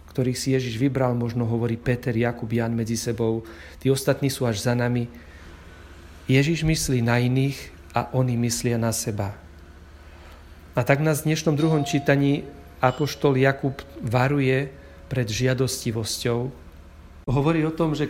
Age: 40-59